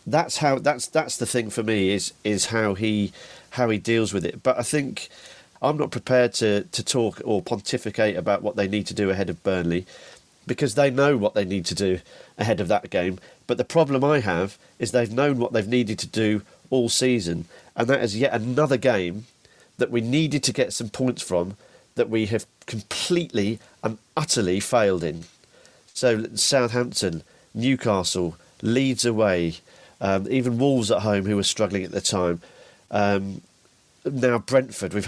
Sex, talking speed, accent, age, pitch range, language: male, 180 wpm, British, 40-59, 100-125 Hz, English